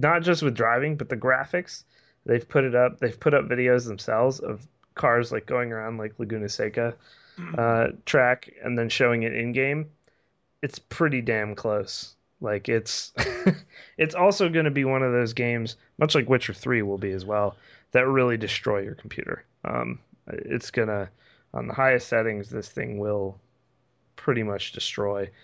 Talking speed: 170 wpm